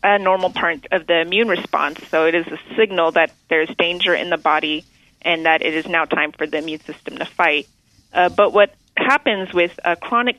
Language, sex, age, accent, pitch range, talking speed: English, female, 30-49, American, 160-185 Hz, 215 wpm